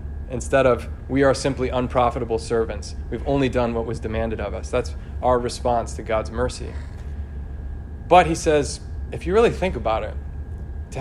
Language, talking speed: English, 170 wpm